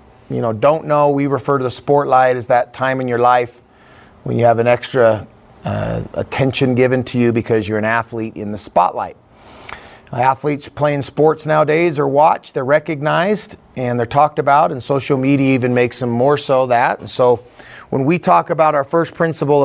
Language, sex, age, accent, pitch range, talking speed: English, male, 30-49, American, 120-140 Hz, 195 wpm